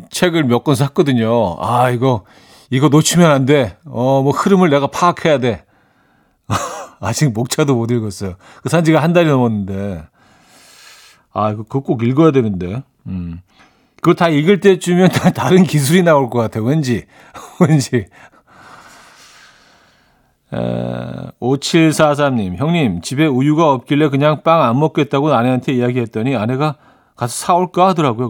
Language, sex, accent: Korean, male, native